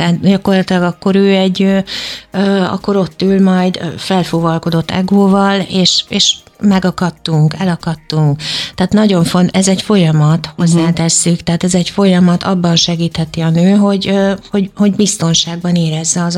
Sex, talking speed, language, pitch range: female, 130 wpm, Hungarian, 165-185 Hz